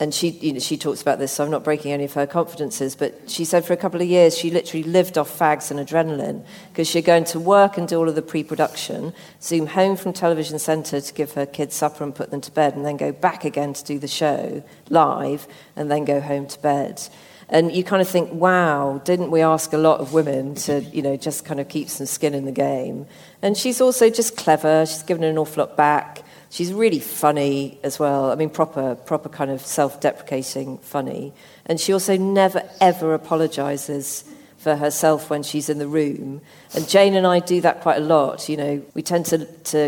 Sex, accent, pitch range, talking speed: female, British, 145-175 Hz, 225 wpm